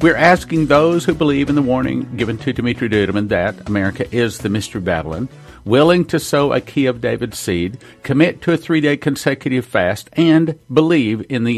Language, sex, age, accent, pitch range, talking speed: English, male, 50-69, American, 110-150 Hz, 190 wpm